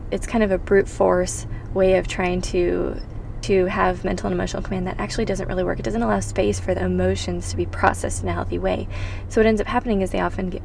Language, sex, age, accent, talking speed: English, female, 20-39, American, 250 wpm